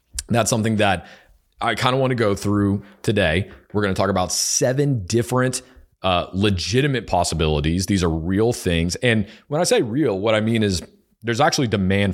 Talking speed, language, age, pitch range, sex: 185 wpm, English, 30-49, 90-120 Hz, male